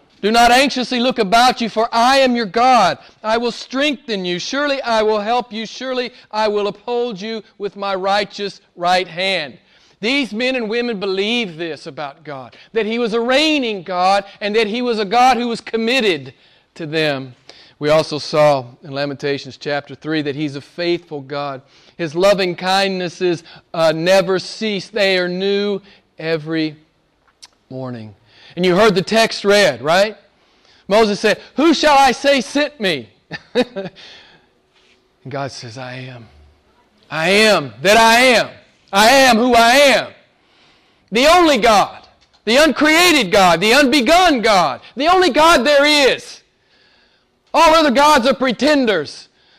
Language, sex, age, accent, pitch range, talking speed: English, male, 40-59, American, 175-265 Hz, 150 wpm